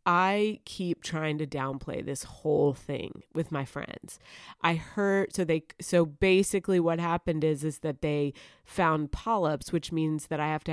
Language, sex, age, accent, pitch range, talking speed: English, female, 30-49, American, 155-200 Hz, 175 wpm